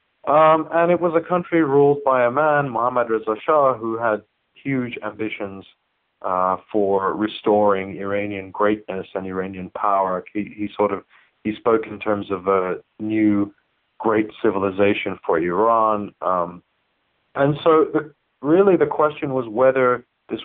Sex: male